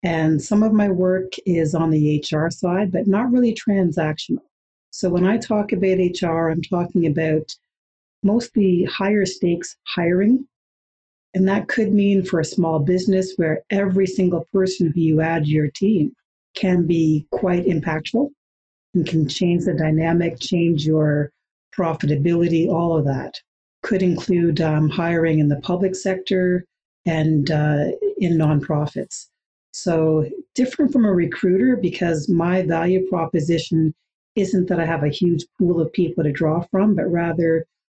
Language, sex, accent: English, female, American